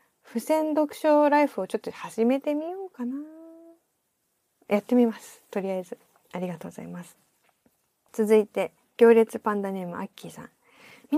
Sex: female